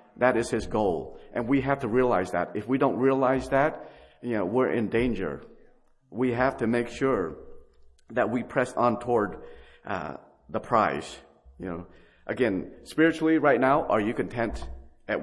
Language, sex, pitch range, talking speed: English, male, 105-130 Hz, 170 wpm